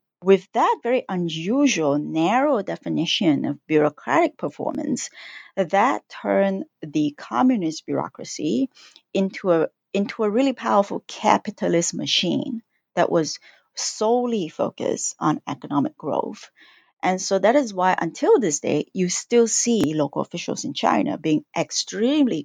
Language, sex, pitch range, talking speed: English, female, 160-235 Hz, 125 wpm